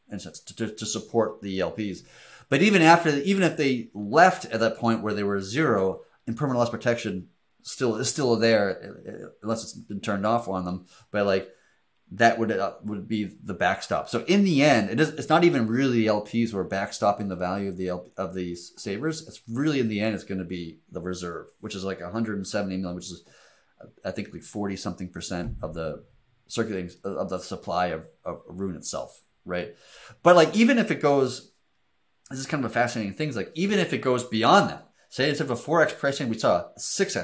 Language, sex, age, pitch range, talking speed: English, male, 30-49, 100-140 Hz, 215 wpm